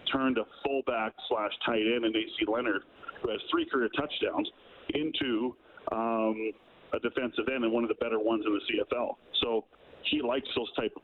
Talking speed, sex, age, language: 185 wpm, male, 40-59, English